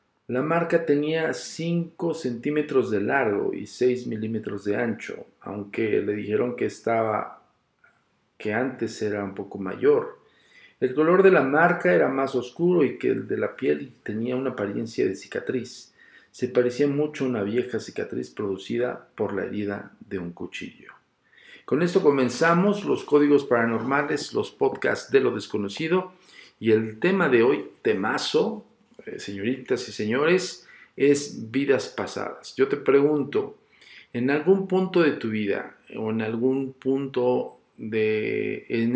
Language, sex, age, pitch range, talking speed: Spanish, male, 50-69, 115-165 Hz, 145 wpm